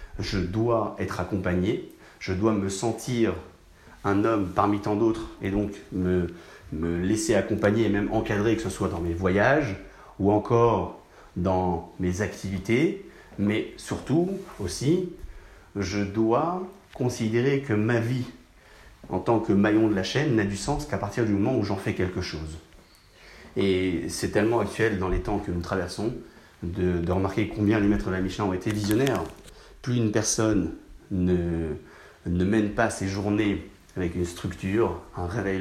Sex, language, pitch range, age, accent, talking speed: male, French, 90-110 Hz, 30-49, French, 165 wpm